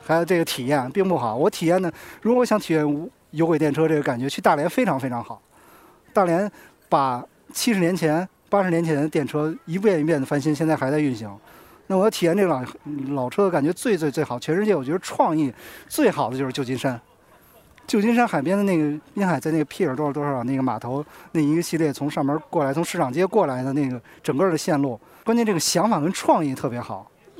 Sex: male